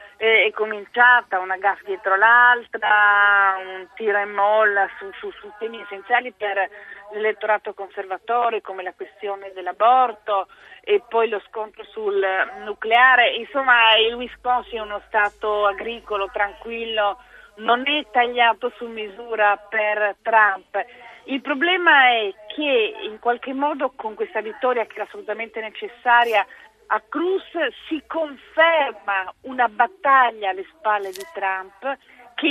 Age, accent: 40-59, native